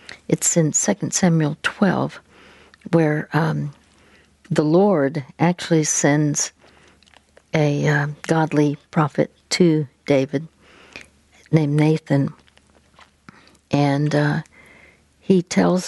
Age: 60-79